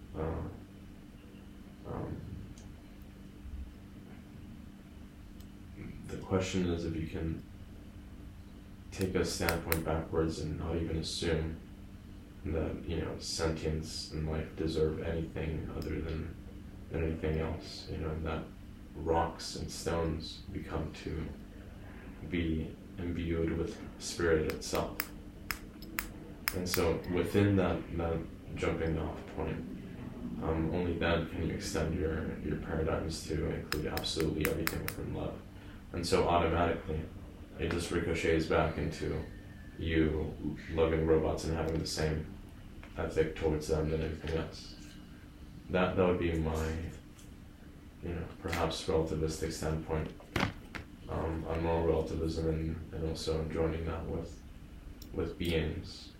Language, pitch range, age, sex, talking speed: English, 80-95 Hz, 20-39, male, 115 wpm